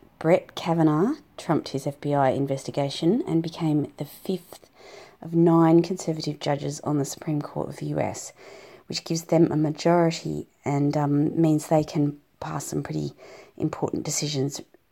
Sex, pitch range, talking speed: female, 145-165 Hz, 145 wpm